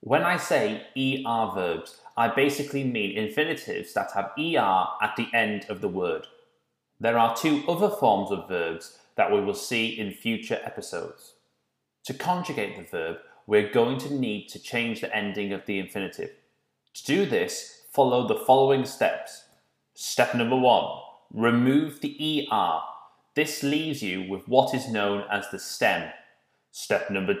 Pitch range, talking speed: 110-150 Hz, 160 wpm